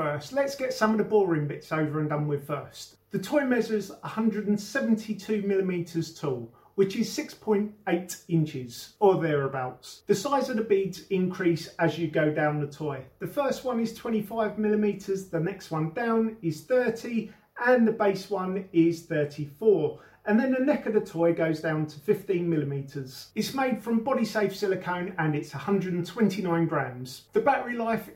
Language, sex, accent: English, male, British